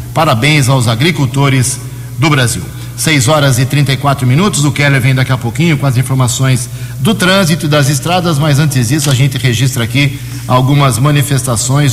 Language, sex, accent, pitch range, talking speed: Portuguese, male, Brazilian, 125-150 Hz, 175 wpm